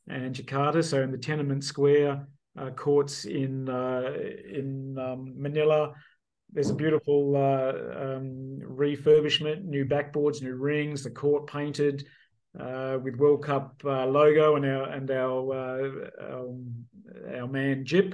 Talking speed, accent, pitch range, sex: 140 wpm, Australian, 135-155 Hz, male